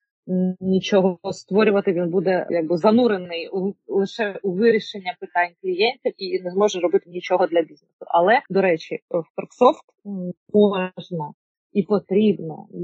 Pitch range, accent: 180-225 Hz, native